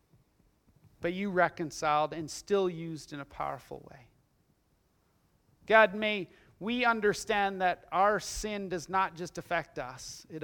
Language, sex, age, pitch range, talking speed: English, male, 40-59, 150-200 Hz, 130 wpm